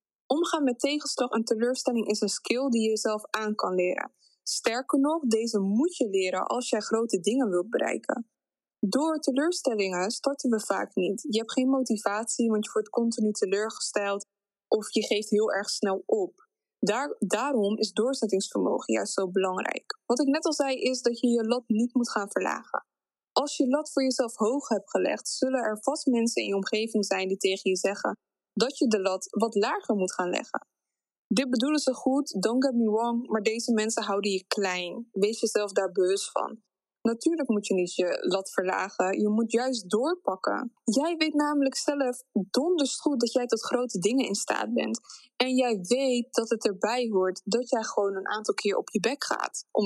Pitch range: 205-265 Hz